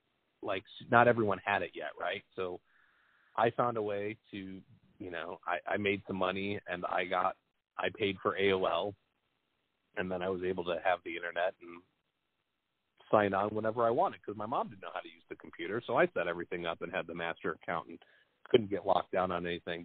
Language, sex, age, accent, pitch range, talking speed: English, male, 30-49, American, 95-115 Hz, 210 wpm